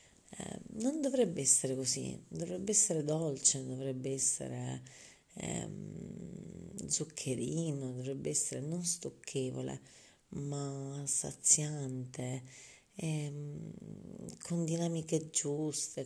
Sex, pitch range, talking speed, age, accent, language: female, 130-160 Hz, 80 wpm, 40-59, native, Italian